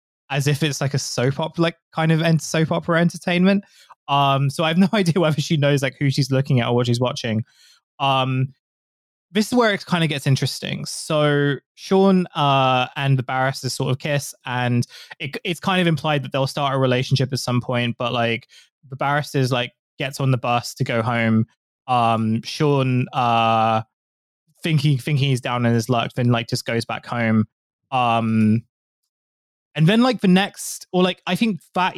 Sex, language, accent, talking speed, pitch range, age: male, English, British, 190 wpm, 120-155 Hz, 20-39